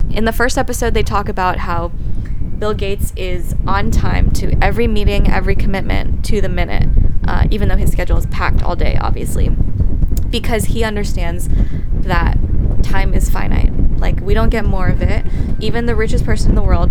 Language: English